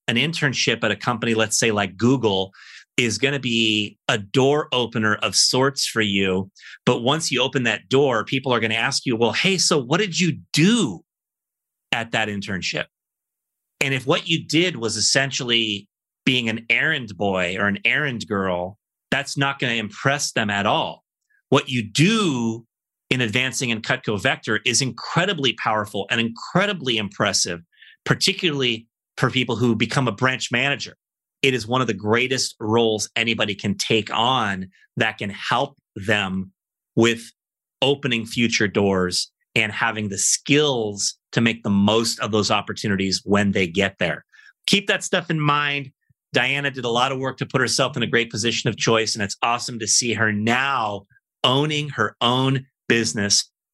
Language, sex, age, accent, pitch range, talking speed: English, male, 30-49, American, 105-135 Hz, 170 wpm